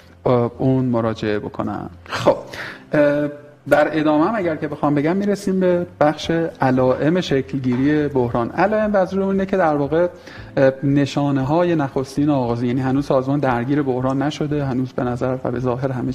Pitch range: 130-155 Hz